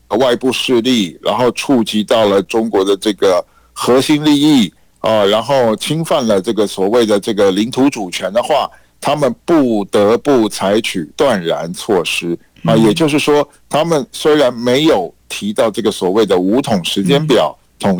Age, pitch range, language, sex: 50-69, 105-150 Hz, Chinese, male